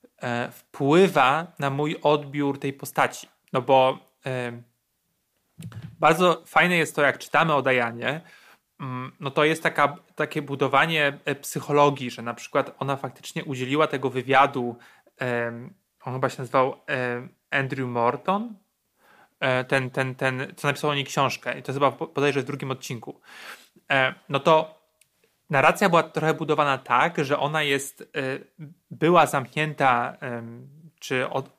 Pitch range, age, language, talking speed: 135-155 Hz, 30-49, Polish, 135 wpm